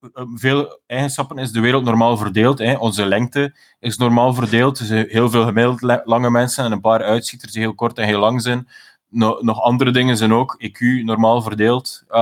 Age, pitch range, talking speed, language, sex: 20-39, 120-140 Hz, 190 wpm, Dutch, male